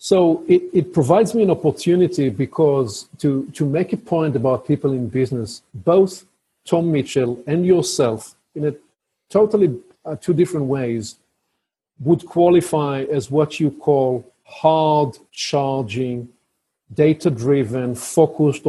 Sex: male